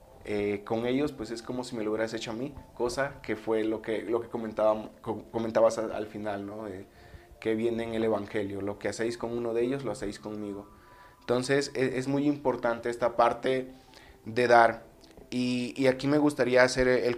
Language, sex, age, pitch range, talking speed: Spanish, male, 20-39, 110-130 Hz, 200 wpm